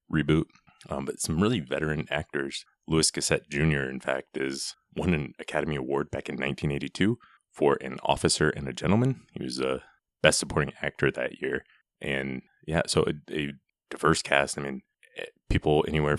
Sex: male